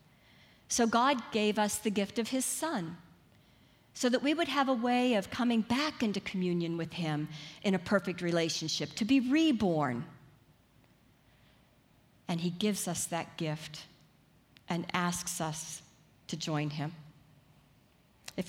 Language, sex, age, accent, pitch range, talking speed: English, female, 50-69, American, 165-225 Hz, 140 wpm